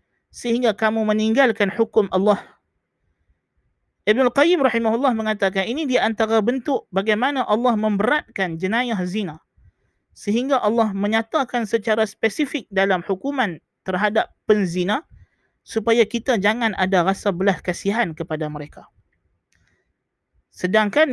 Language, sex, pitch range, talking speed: Malay, male, 190-250 Hz, 105 wpm